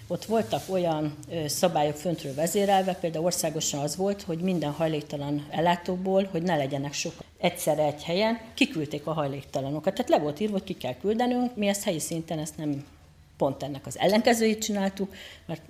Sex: female